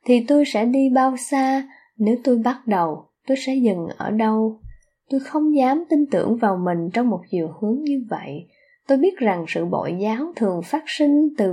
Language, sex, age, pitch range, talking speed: Vietnamese, female, 10-29, 190-275 Hz, 200 wpm